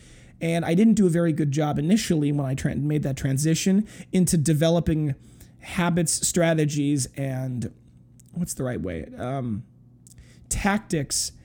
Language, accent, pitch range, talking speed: English, American, 140-175 Hz, 130 wpm